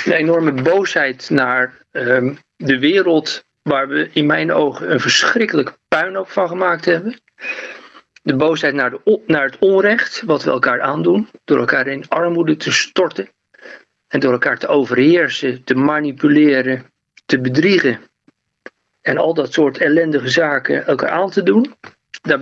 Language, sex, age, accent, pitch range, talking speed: Dutch, male, 60-79, Dutch, 135-185 Hz, 140 wpm